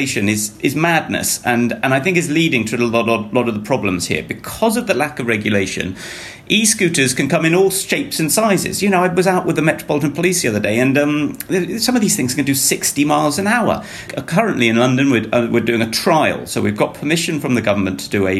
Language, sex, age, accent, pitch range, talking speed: English, male, 40-59, British, 105-155 Hz, 245 wpm